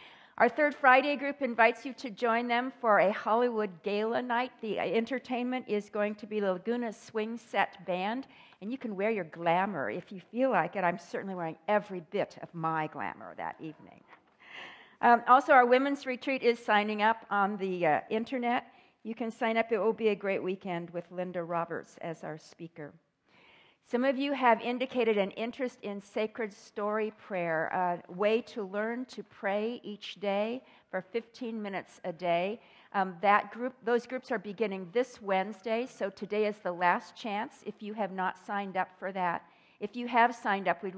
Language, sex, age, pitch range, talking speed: English, female, 50-69, 185-235 Hz, 185 wpm